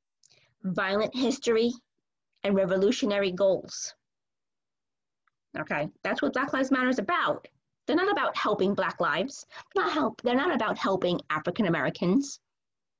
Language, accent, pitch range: English, American, 205-285 Hz